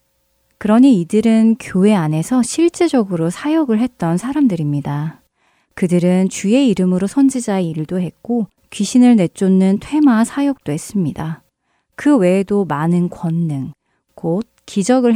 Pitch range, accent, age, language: 170-235 Hz, native, 30-49, Korean